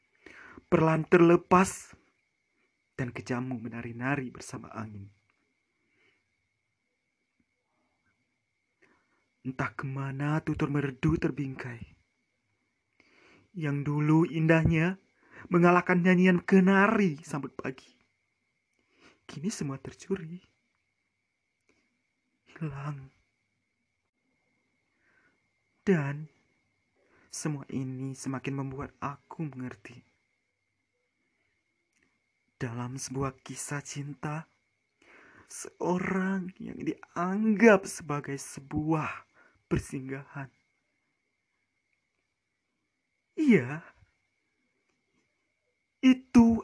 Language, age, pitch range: Indonesian, 30-49, 135-180 Hz